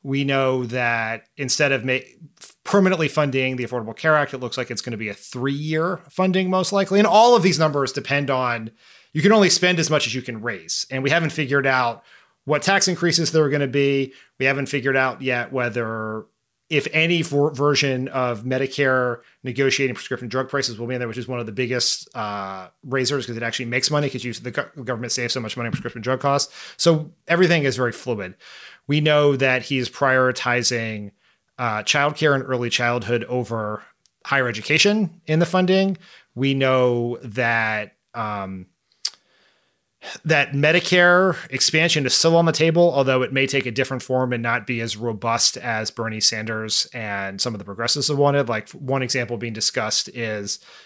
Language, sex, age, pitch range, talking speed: English, male, 30-49, 120-150 Hz, 190 wpm